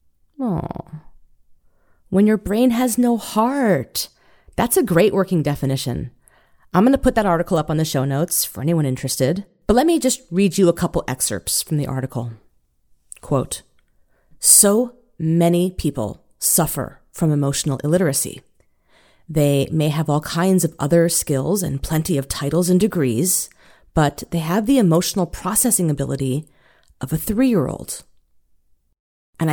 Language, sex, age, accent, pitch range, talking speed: English, female, 30-49, American, 145-195 Hz, 140 wpm